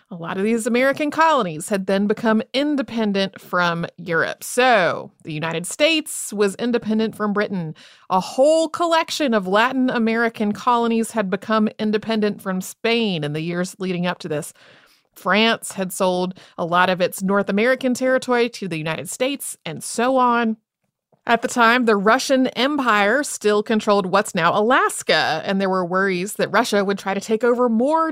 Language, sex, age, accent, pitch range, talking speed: English, female, 30-49, American, 190-255 Hz, 170 wpm